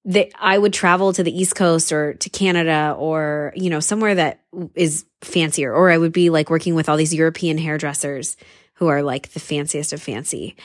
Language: English